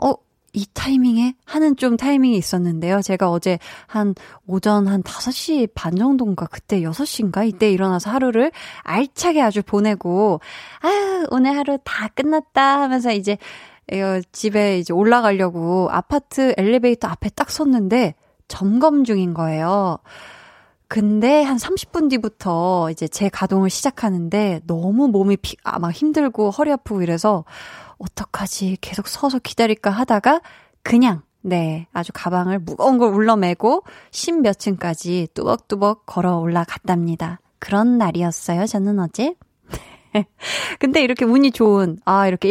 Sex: female